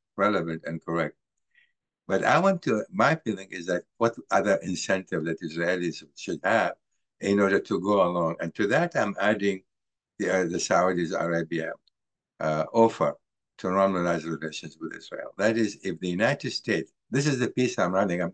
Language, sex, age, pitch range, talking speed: English, male, 60-79, 85-100 Hz, 175 wpm